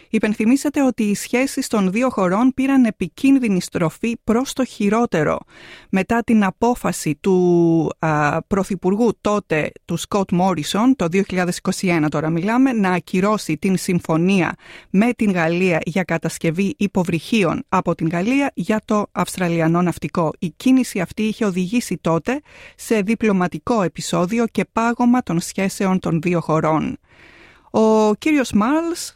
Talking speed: 130 wpm